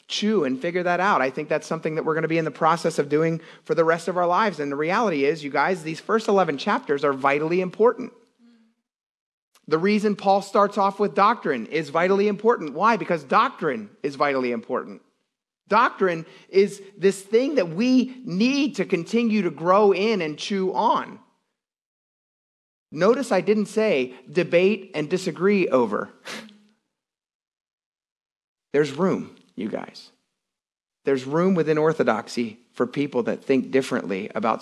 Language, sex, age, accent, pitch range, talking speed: English, male, 30-49, American, 140-210 Hz, 160 wpm